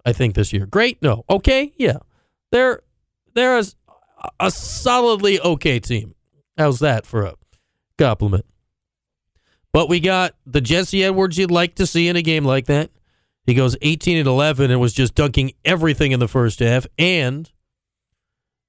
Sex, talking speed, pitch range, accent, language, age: male, 155 wpm, 120-180 Hz, American, English, 40-59